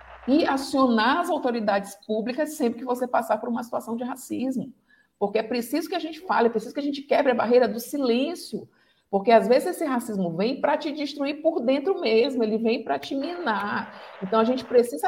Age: 50-69